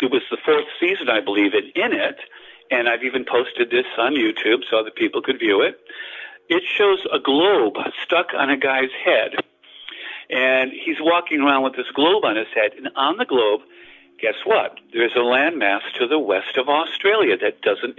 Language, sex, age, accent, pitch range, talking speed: English, male, 60-79, American, 290-425 Hz, 190 wpm